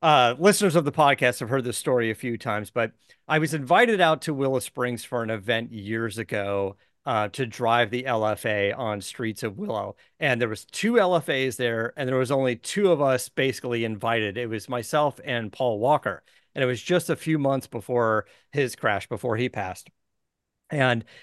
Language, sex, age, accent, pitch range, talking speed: English, male, 40-59, American, 115-165 Hz, 195 wpm